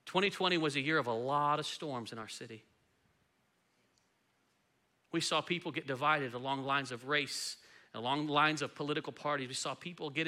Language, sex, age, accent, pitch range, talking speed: English, male, 40-59, American, 130-165 Hz, 175 wpm